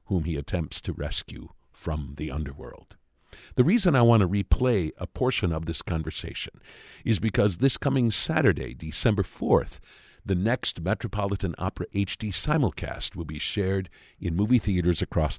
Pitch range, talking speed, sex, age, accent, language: 80-105 Hz, 150 wpm, male, 50-69, American, English